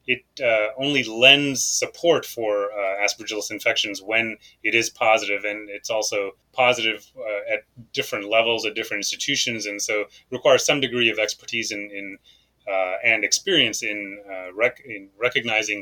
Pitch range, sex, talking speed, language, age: 105-125 Hz, male, 140 wpm, English, 30-49